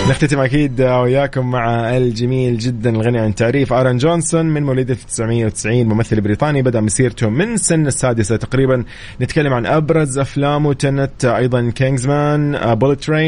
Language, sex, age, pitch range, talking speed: English, male, 20-39, 110-140 Hz, 135 wpm